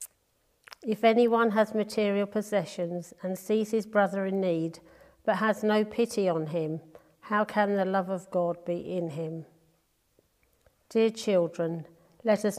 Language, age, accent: English, 50-69, British